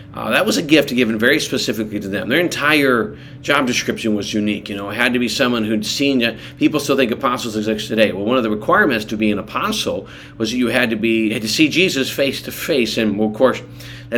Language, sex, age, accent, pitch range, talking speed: English, male, 40-59, American, 110-135 Hz, 245 wpm